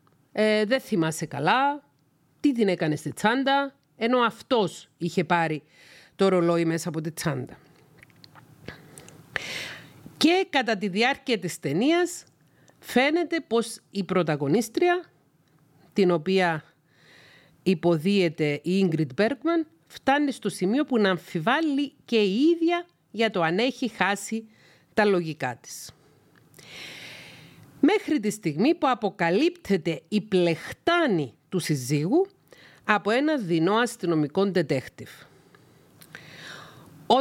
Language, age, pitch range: Greek, 40-59, 160-235 Hz